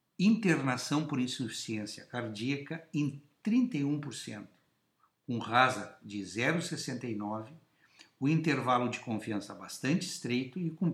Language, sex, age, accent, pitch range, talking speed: Portuguese, male, 60-79, Brazilian, 115-155 Hz, 100 wpm